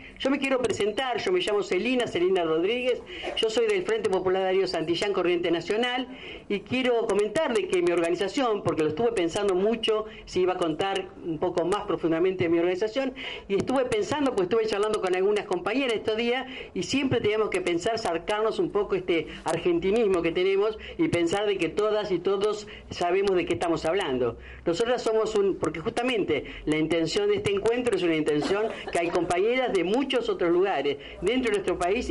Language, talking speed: Spanish, 190 wpm